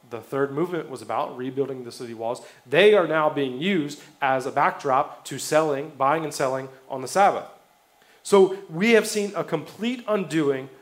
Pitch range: 135-170 Hz